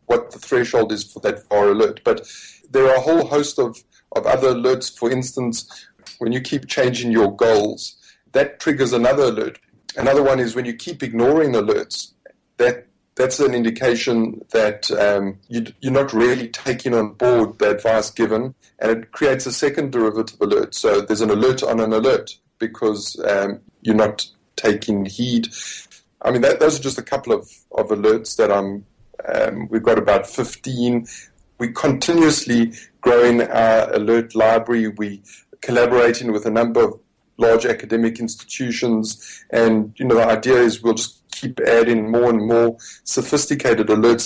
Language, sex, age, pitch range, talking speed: English, male, 30-49, 110-130 Hz, 165 wpm